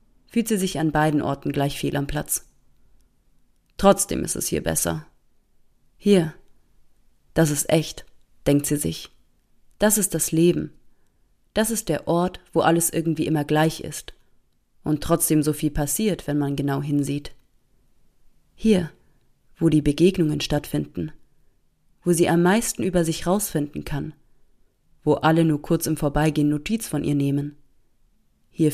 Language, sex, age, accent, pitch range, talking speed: German, female, 30-49, German, 145-170 Hz, 145 wpm